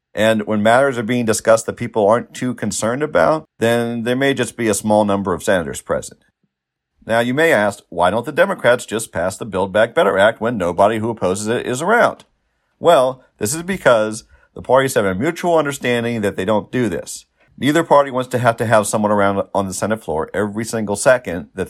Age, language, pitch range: 50-69, English, 100-125 Hz